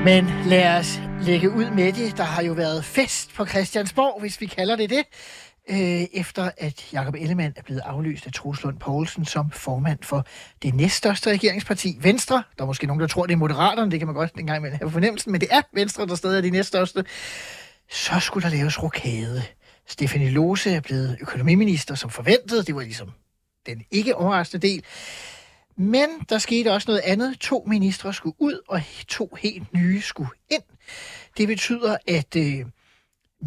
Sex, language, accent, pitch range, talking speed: male, Danish, native, 155-210 Hz, 185 wpm